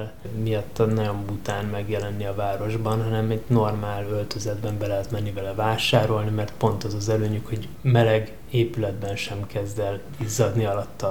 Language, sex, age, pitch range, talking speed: Hungarian, male, 20-39, 105-115 Hz, 150 wpm